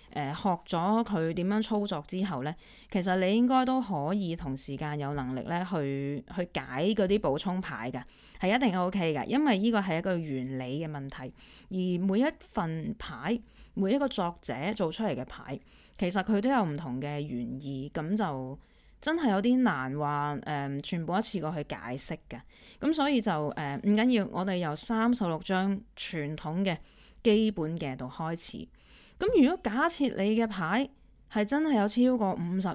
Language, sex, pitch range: Chinese, female, 155-220 Hz